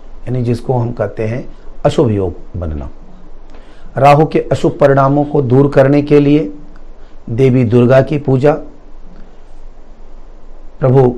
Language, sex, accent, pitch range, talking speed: Hindi, male, native, 105-145 Hz, 115 wpm